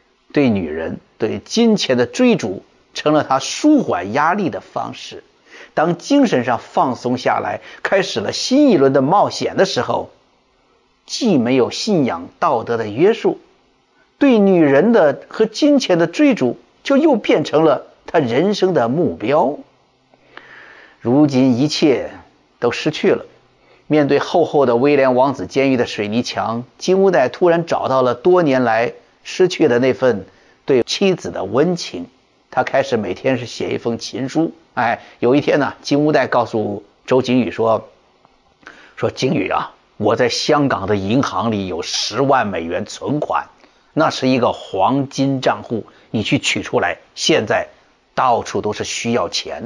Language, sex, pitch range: Chinese, male, 125-195 Hz